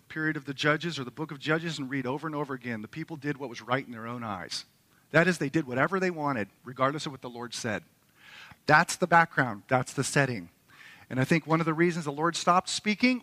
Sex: male